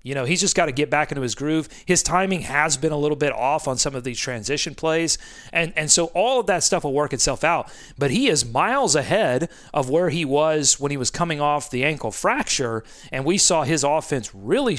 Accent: American